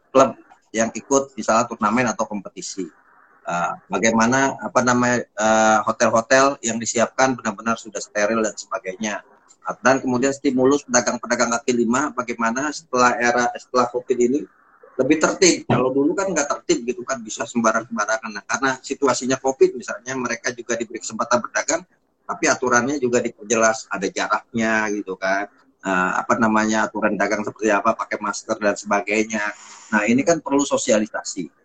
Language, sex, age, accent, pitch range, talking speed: Indonesian, male, 30-49, native, 110-130 Hz, 150 wpm